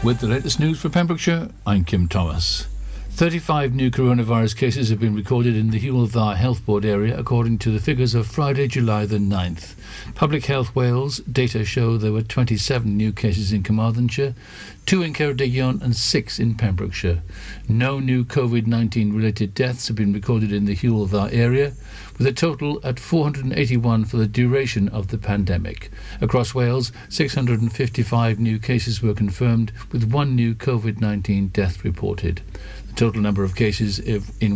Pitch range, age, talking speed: 105-135 Hz, 60-79, 160 wpm